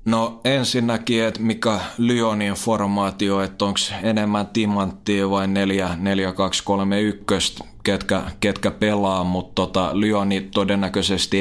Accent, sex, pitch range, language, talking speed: native, male, 95-110 Hz, Finnish, 100 wpm